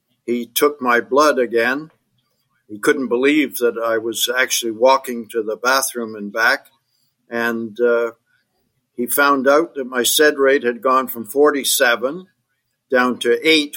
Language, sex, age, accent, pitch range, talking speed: English, male, 60-79, American, 115-130 Hz, 150 wpm